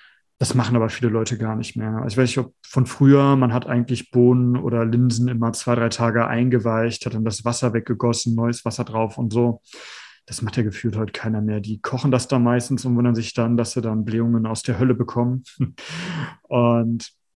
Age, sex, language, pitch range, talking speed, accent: 30-49, male, German, 115-130 Hz, 205 wpm, German